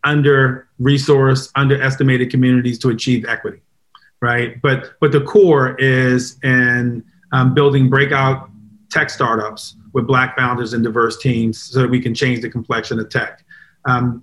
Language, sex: English, male